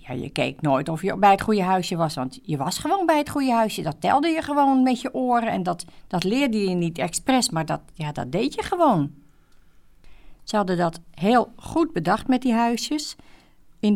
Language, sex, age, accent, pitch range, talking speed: Dutch, female, 50-69, Dutch, 145-190 Hz, 205 wpm